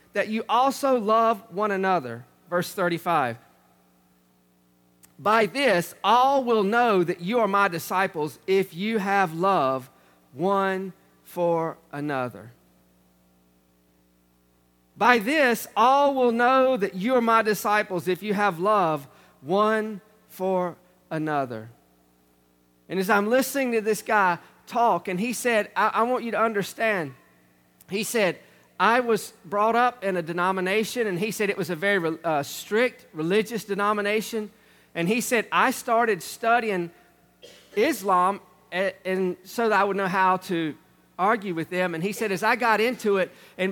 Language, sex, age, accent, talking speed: English, male, 40-59, American, 145 wpm